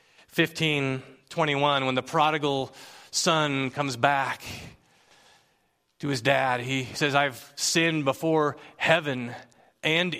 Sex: male